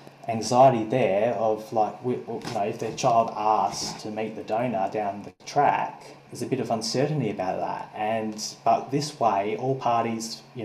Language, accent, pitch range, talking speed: English, Australian, 110-130 Hz, 175 wpm